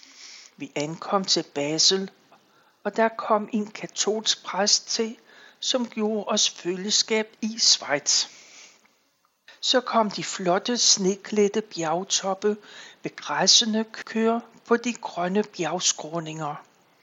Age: 60-79